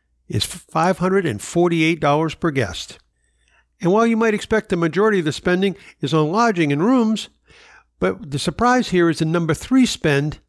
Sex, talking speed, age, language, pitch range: male, 160 wpm, 60-79, English, 135-190 Hz